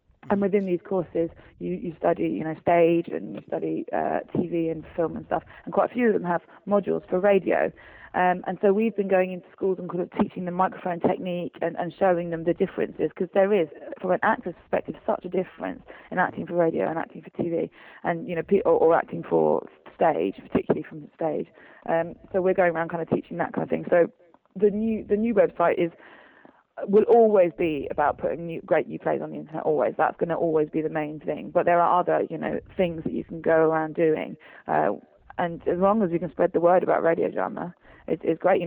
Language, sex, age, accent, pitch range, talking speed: English, female, 20-39, British, 165-190 Hz, 235 wpm